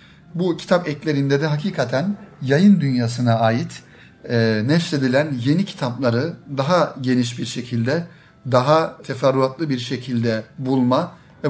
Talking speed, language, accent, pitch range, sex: 110 wpm, Turkish, native, 130-165 Hz, male